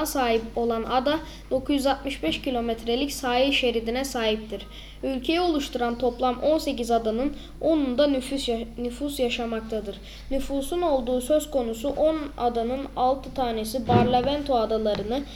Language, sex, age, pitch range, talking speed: Turkish, female, 10-29, 230-275 Hz, 110 wpm